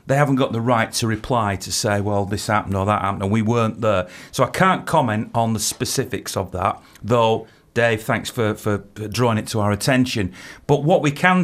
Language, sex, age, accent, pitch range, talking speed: English, male, 40-59, British, 105-130 Hz, 220 wpm